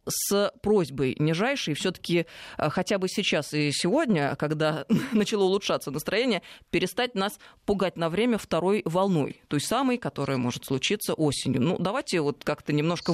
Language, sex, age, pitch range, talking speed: Russian, female, 20-39, 165-220 Hz, 140 wpm